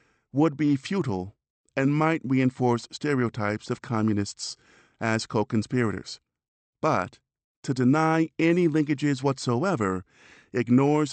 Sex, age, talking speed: male, 50-69, 95 wpm